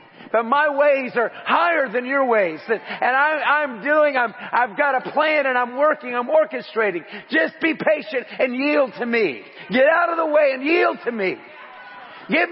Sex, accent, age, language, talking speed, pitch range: male, American, 50-69, English, 180 wpm, 175-270 Hz